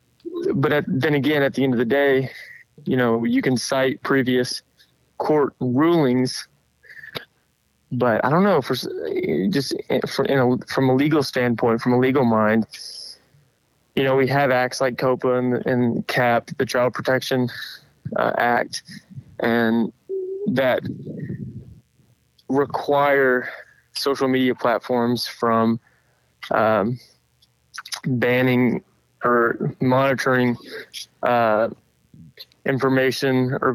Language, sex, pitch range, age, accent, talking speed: English, male, 120-135 Hz, 20-39, American, 110 wpm